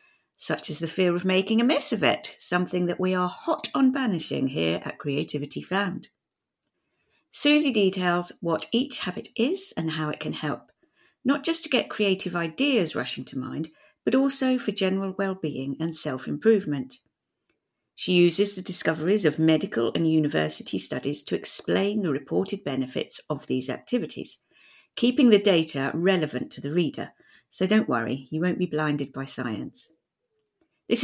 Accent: British